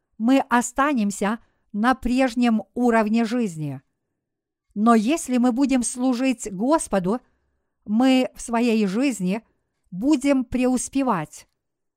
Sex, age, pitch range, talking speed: female, 50-69, 210-265 Hz, 90 wpm